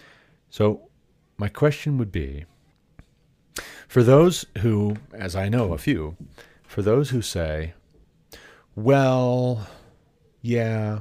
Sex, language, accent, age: male, English, American, 40-59